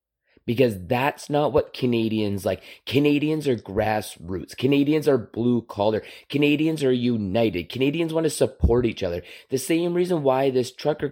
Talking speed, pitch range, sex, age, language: 150 wpm, 120-145 Hz, male, 30-49, English